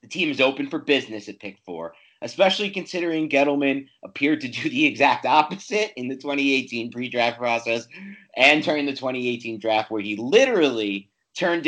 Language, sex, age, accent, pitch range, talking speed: English, male, 30-49, American, 110-145 Hz, 165 wpm